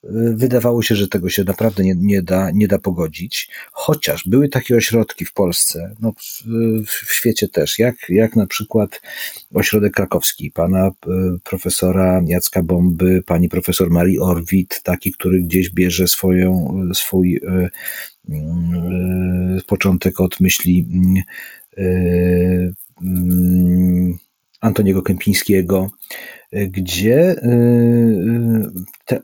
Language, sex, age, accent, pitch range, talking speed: Polish, male, 40-59, native, 90-115 Hz, 115 wpm